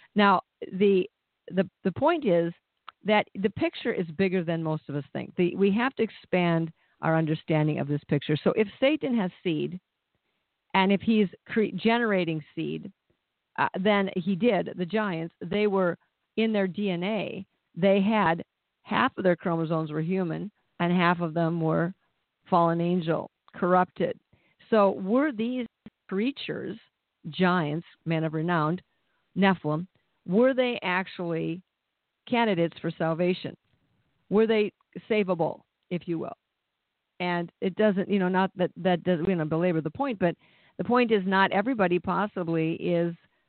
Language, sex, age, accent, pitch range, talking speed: English, female, 50-69, American, 165-200 Hz, 150 wpm